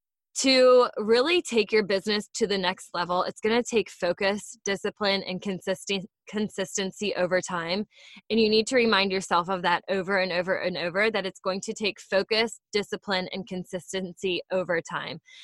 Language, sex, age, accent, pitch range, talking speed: English, female, 20-39, American, 190-225 Hz, 170 wpm